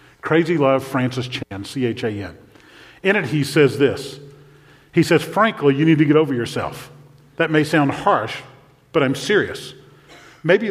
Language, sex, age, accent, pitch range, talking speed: English, male, 50-69, American, 135-170 Hz, 150 wpm